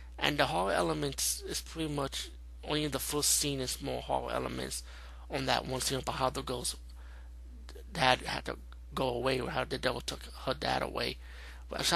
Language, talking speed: English, 190 wpm